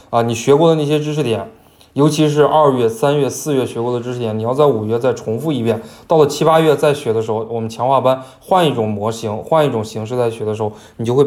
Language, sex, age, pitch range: Chinese, male, 20-39, 110-150 Hz